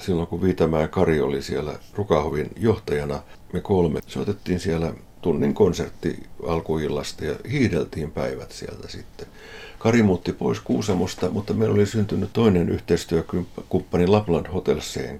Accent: native